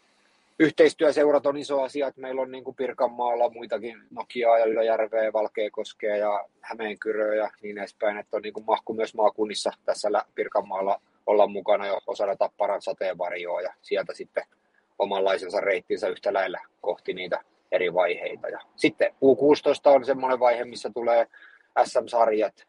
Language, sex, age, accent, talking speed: Finnish, male, 30-49, native, 145 wpm